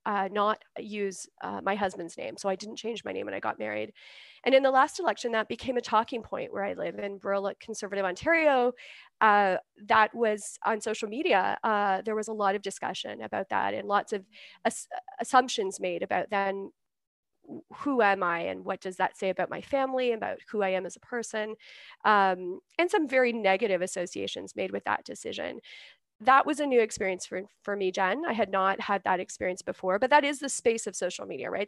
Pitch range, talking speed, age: 195-250 Hz, 210 wpm, 30-49